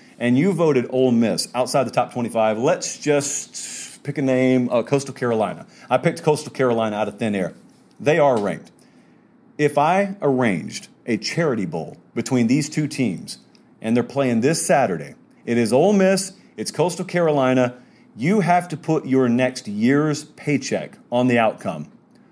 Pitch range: 125-165 Hz